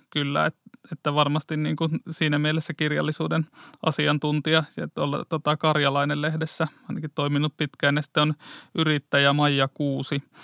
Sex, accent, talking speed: male, native, 90 wpm